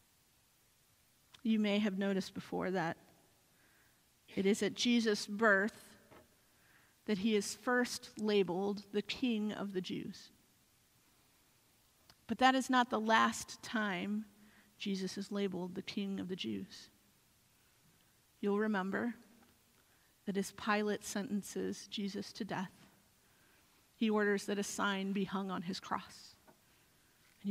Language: English